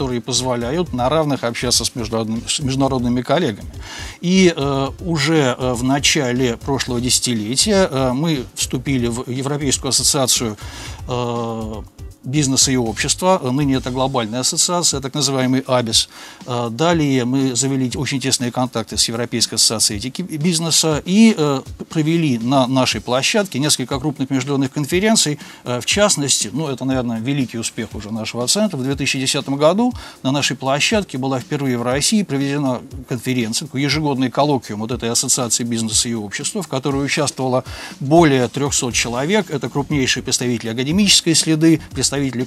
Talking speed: 135 wpm